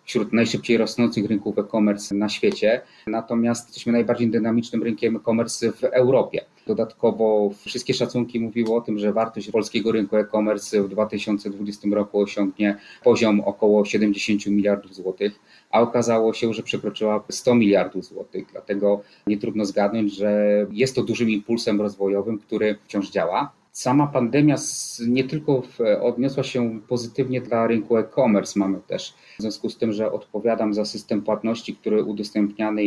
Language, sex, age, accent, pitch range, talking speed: Polish, male, 30-49, native, 105-120 Hz, 145 wpm